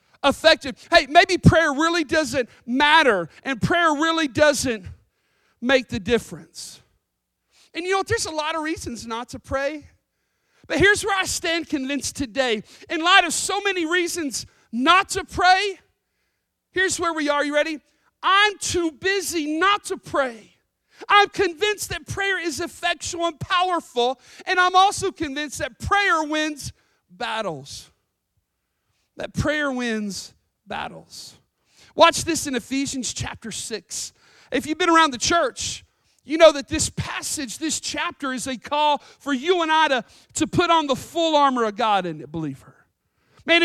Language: English